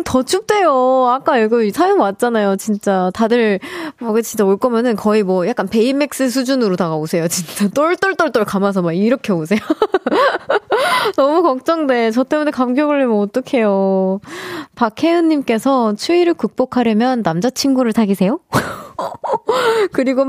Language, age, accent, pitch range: Korean, 20-39, native, 195-270 Hz